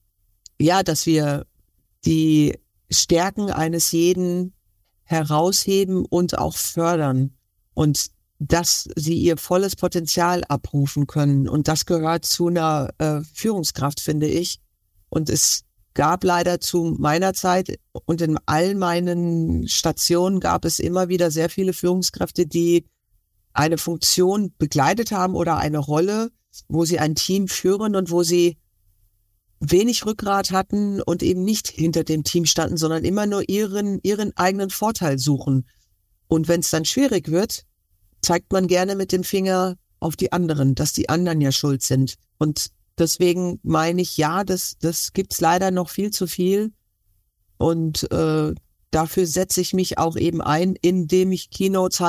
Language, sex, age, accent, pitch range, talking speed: German, female, 50-69, German, 145-185 Hz, 145 wpm